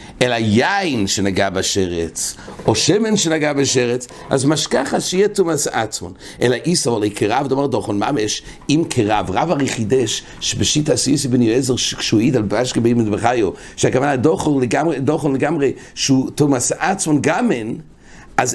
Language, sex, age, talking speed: English, male, 60-79, 120 wpm